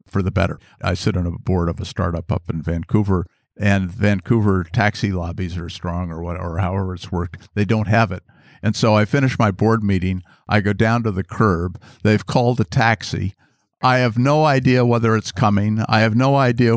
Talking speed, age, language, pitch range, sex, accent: 205 wpm, 50-69, English, 95-120 Hz, male, American